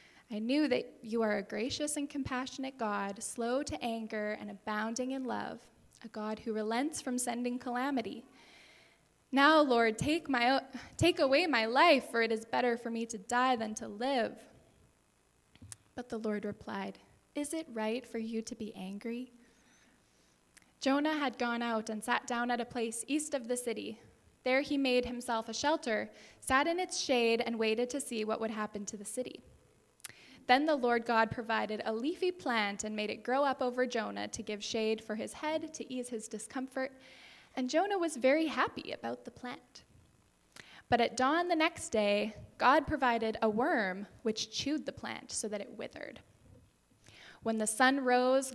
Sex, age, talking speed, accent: female, 10-29, 180 wpm, American